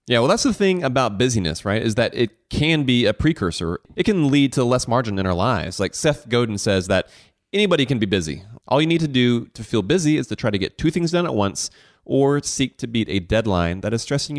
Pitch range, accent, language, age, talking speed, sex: 100-145 Hz, American, English, 30-49, 250 wpm, male